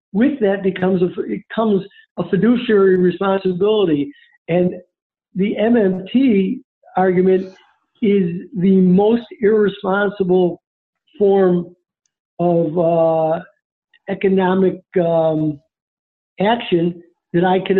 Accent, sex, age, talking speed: American, male, 60-79, 90 wpm